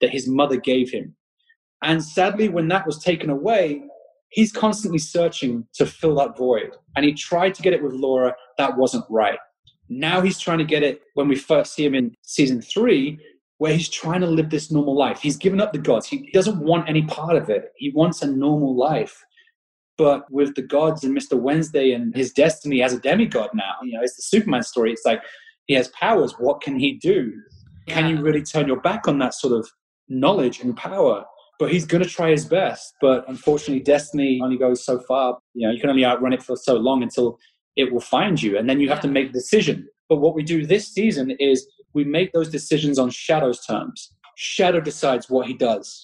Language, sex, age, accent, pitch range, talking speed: English, male, 20-39, British, 135-180 Hz, 215 wpm